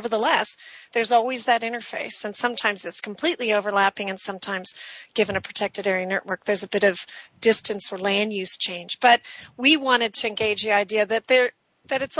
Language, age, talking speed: English, 40-59, 180 wpm